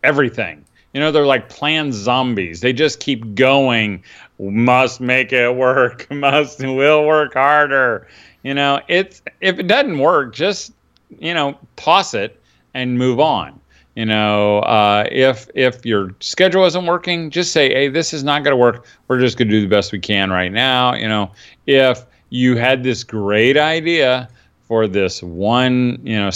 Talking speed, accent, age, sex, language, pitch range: 170 wpm, American, 40-59, male, English, 105-140 Hz